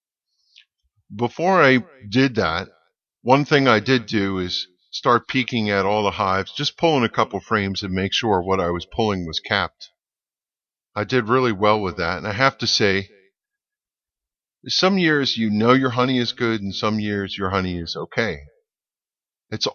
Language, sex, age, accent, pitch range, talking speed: English, male, 50-69, American, 95-125 Hz, 175 wpm